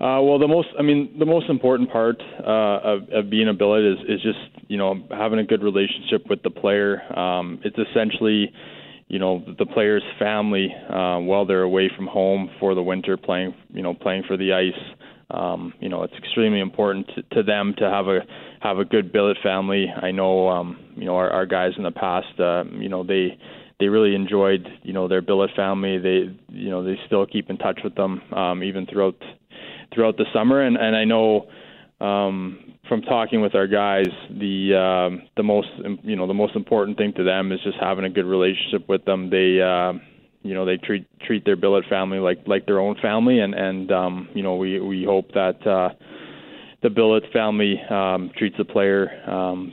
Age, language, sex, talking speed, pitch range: 20-39, English, male, 210 wpm, 95-105 Hz